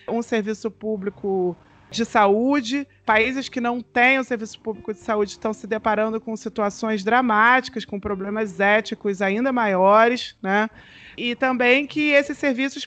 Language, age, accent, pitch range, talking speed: Portuguese, 30-49, Brazilian, 205-260 Hz, 145 wpm